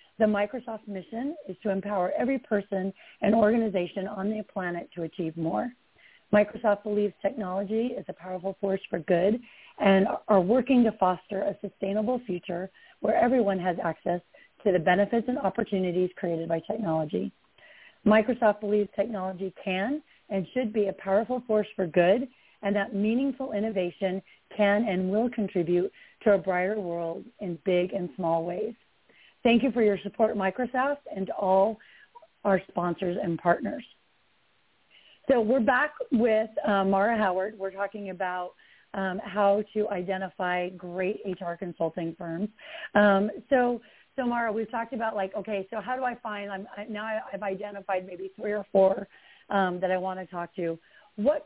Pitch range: 185-220 Hz